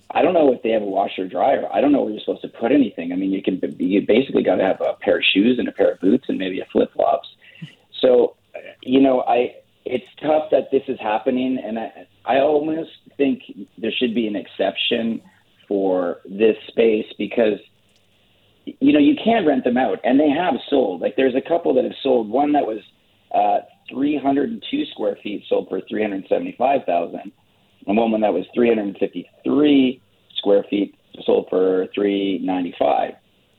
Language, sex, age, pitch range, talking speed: English, male, 40-59, 100-135 Hz, 185 wpm